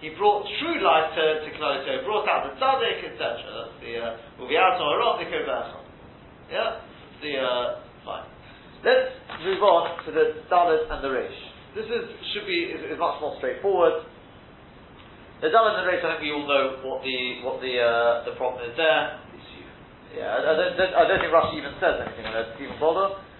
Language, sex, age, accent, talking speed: English, male, 40-59, British, 175 wpm